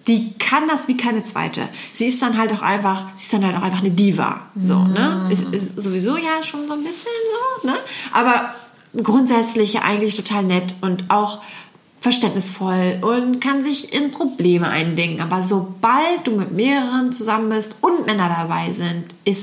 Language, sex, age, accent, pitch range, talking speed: German, female, 30-49, German, 195-255 Hz, 180 wpm